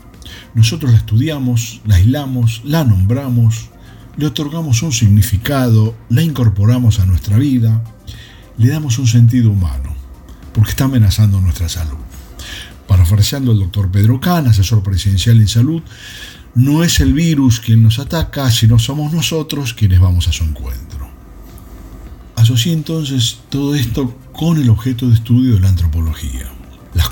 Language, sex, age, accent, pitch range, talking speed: Spanish, male, 50-69, Argentinian, 100-130 Hz, 140 wpm